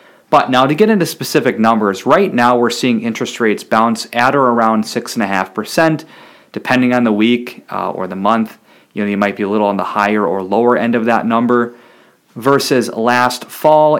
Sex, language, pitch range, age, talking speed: male, English, 105-125 Hz, 30-49, 205 wpm